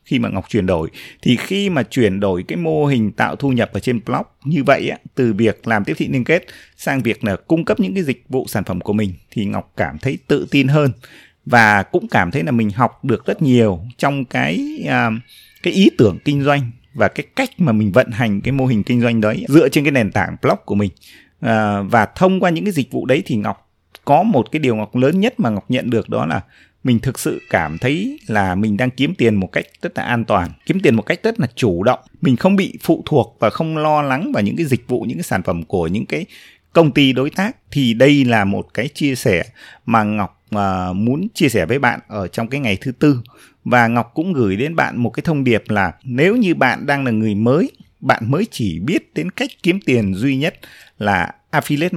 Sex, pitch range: male, 110-150 Hz